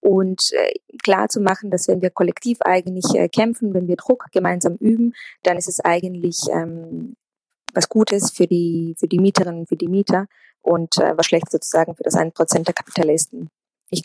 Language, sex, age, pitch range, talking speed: German, female, 20-39, 170-205 Hz, 180 wpm